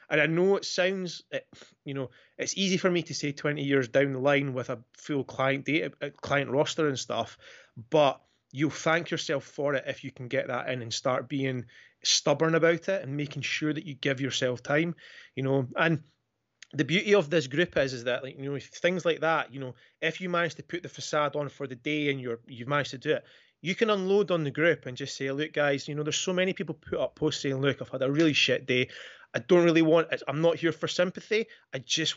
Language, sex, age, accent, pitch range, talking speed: English, male, 30-49, British, 130-160 Hz, 245 wpm